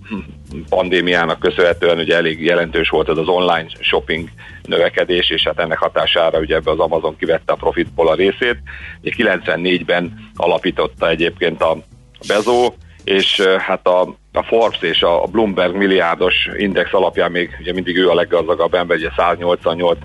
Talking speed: 150 wpm